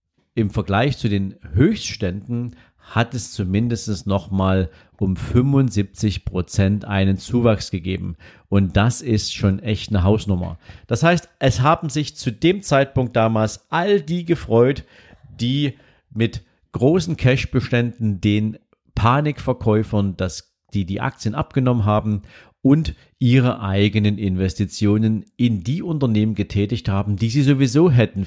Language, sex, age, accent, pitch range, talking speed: German, male, 50-69, German, 100-130 Hz, 125 wpm